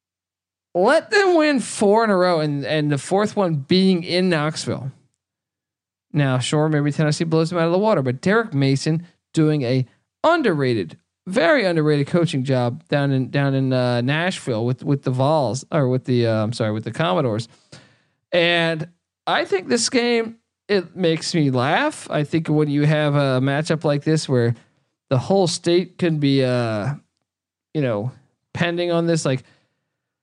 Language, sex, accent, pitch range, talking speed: English, male, American, 130-175 Hz, 170 wpm